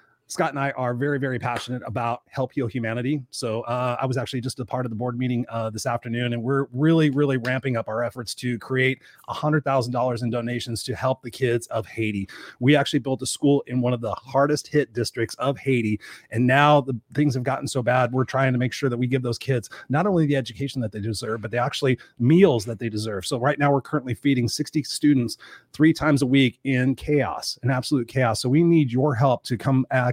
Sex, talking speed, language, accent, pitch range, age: male, 230 wpm, English, American, 120-140 Hz, 30-49